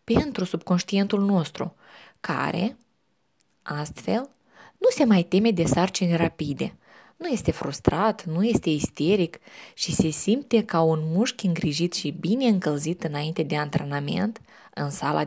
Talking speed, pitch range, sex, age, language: 130 wpm, 165-220 Hz, female, 20-39, Romanian